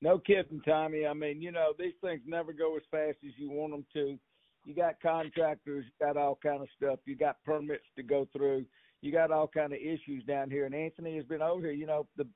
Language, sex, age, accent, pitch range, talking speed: English, male, 60-79, American, 145-175 Hz, 245 wpm